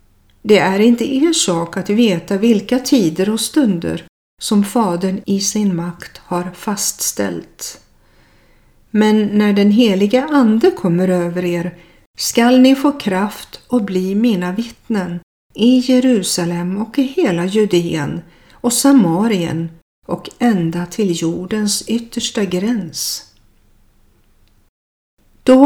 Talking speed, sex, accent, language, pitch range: 115 wpm, female, native, Swedish, 175-235 Hz